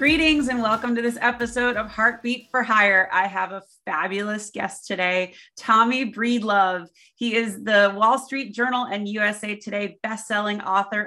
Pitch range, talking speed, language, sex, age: 195-240 Hz, 155 wpm, English, female, 30-49